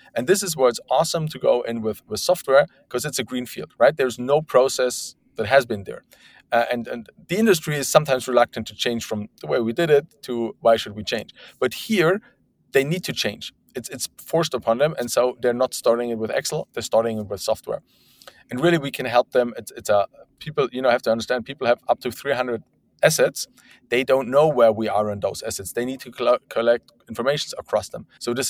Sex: male